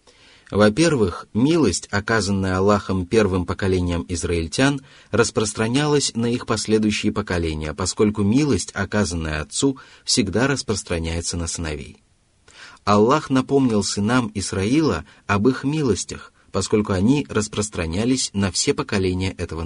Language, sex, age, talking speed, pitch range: Russian, male, 30-49, 105 wpm, 95-120 Hz